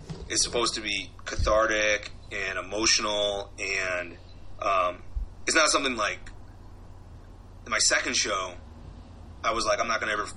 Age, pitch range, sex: 30-49, 90-105 Hz, male